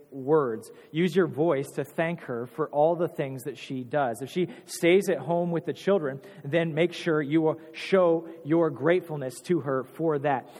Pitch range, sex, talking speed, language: 140-170 Hz, male, 195 wpm, English